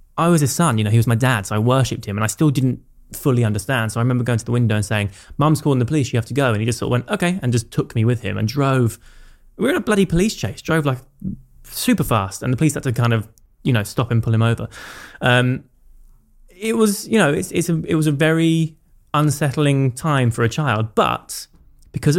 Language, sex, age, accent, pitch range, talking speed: English, male, 20-39, British, 110-140 Hz, 260 wpm